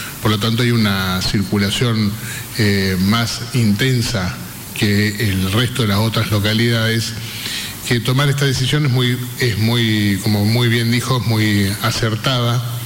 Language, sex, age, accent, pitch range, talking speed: Spanish, male, 30-49, Argentinian, 105-120 Hz, 140 wpm